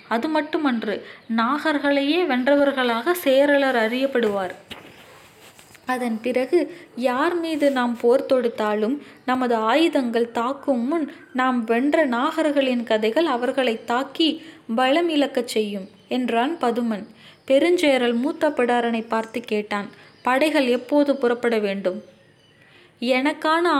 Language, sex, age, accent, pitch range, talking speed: Tamil, female, 20-39, native, 235-300 Hz, 90 wpm